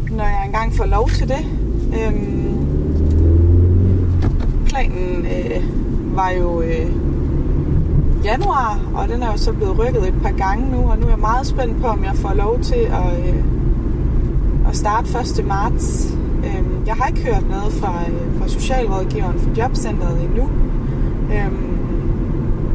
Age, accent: 20-39, native